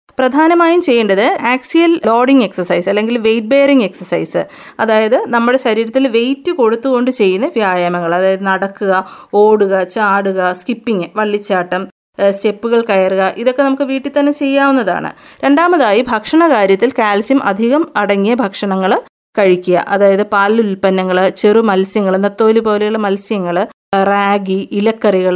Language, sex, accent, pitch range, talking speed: Malayalam, female, native, 200-250 Hz, 110 wpm